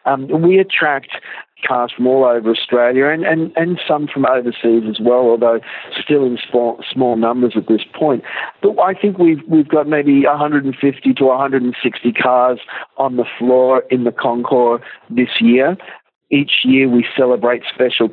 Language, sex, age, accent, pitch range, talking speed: English, male, 50-69, Australian, 115-135 Hz, 160 wpm